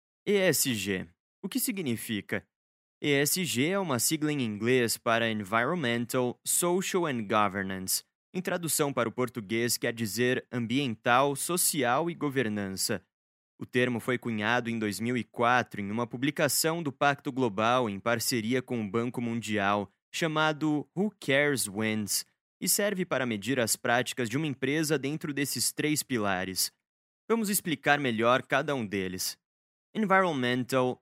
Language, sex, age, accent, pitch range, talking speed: Portuguese, male, 20-39, Brazilian, 115-145 Hz, 130 wpm